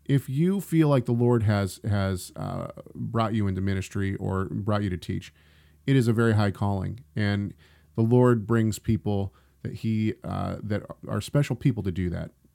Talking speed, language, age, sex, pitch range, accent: 175 wpm, English, 40-59, male, 95-120 Hz, American